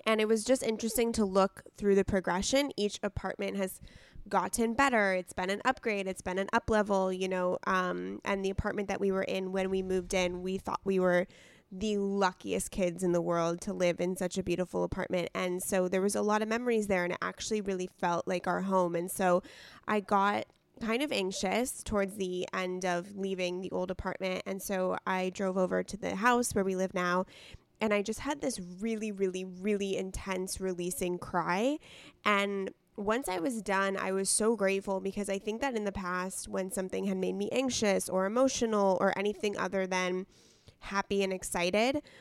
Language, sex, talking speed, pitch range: English, female, 200 wpm, 185-210 Hz